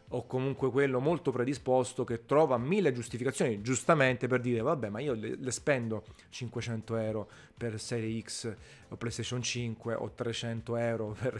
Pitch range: 115-140 Hz